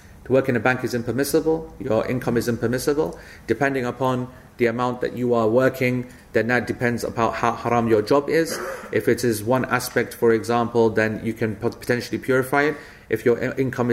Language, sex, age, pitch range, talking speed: English, male, 30-49, 110-130 Hz, 190 wpm